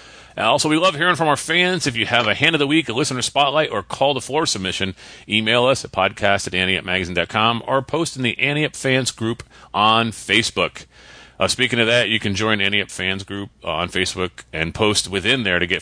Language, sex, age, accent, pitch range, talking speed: English, male, 30-49, American, 105-155 Hz, 210 wpm